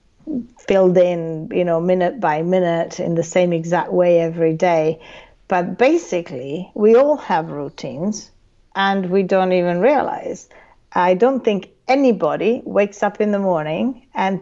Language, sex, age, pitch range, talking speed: English, female, 40-59, 180-255 Hz, 145 wpm